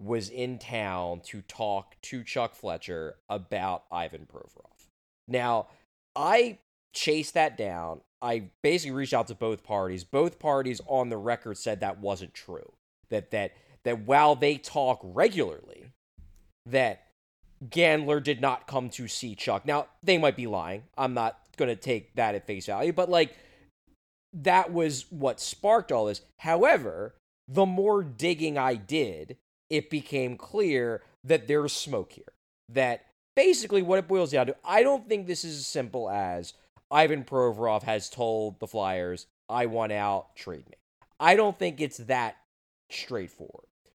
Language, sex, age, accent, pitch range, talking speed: English, male, 20-39, American, 110-155 Hz, 155 wpm